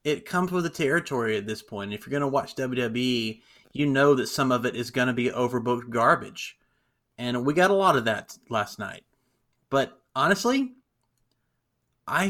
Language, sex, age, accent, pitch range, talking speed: English, male, 30-49, American, 130-170 Hz, 185 wpm